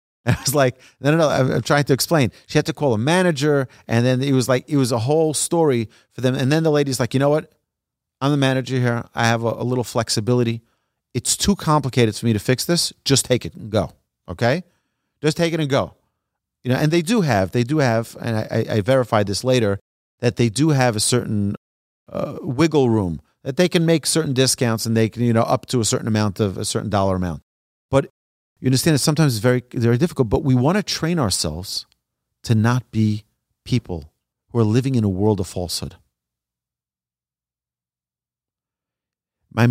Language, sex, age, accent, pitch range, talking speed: English, male, 40-59, American, 105-140 Hz, 210 wpm